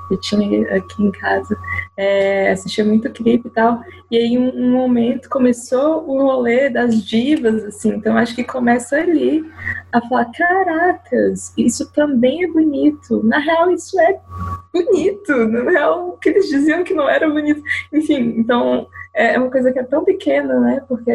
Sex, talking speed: female, 175 wpm